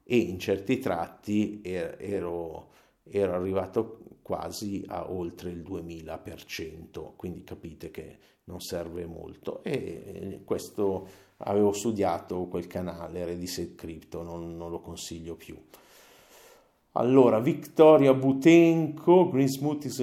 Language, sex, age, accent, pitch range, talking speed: Italian, male, 50-69, native, 90-115 Hz, 110 wpm